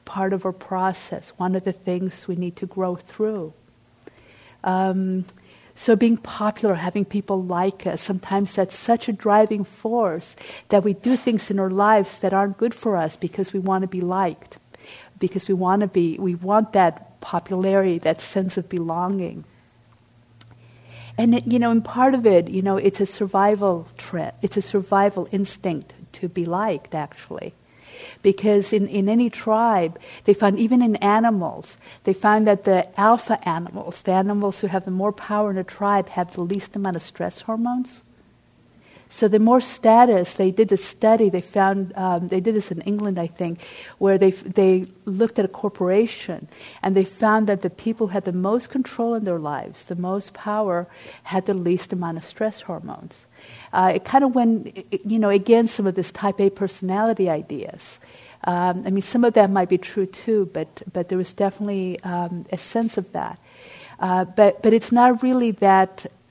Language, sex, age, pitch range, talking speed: English, female, 50-69, 185-215 Hz, 185 wpm